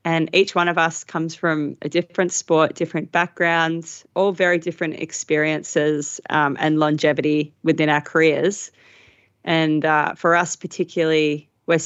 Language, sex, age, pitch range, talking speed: English, female, 20-39, 150-170 Hz, 140 wpm